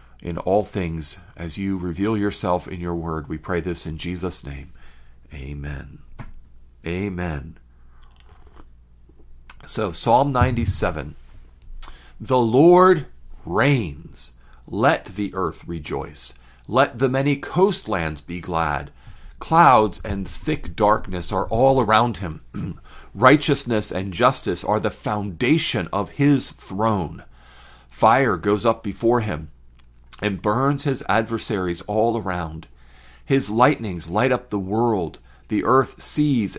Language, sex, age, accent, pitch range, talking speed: English, male, 40-59, American, 75-120 Hz, 115 wpm